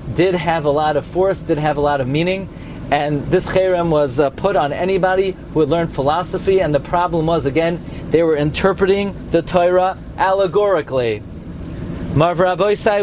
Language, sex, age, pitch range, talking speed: English, male, 40-59, 155-215 Hz, 170 wpm